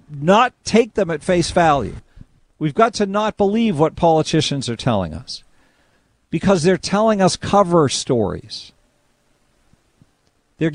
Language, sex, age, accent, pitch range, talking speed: English, male, 50-69, American, 120-160 Hz, 130 wpm